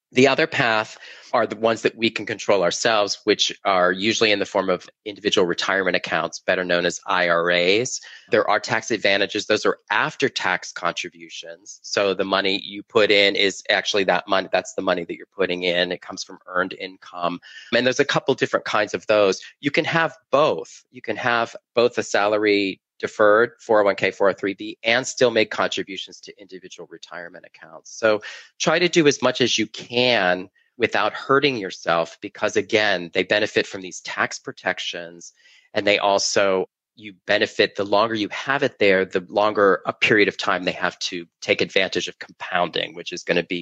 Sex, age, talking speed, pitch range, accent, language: male, 30-49, 185 wpm, 95-120 Hz, American, English